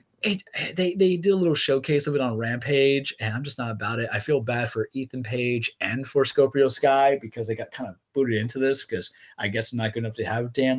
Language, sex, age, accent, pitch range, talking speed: English, male, 20-39, American, 110-160 Hz, 245 wpm